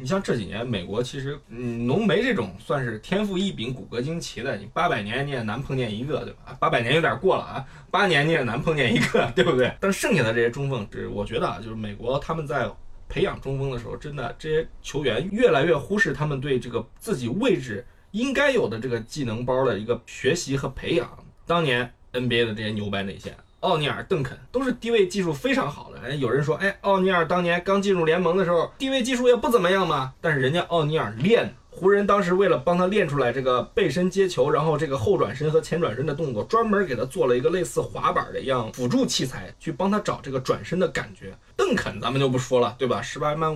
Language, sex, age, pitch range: Chinese, male, 20-39, 120-175 Hz